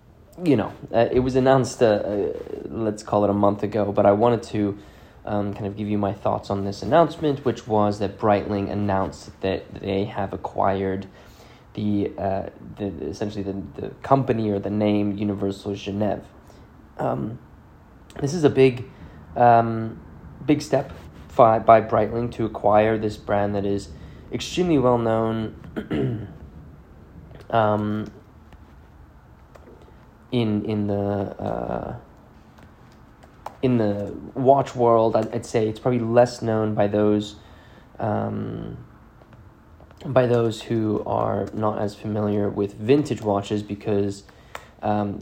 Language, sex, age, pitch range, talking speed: English, male, 20-39, 100-115 Hz, 135 wpm